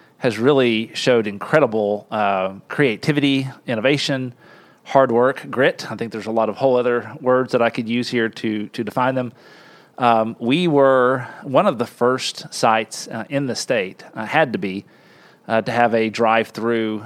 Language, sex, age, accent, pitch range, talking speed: English, male, 40-59, American, 110-130 Hz, 170 wpm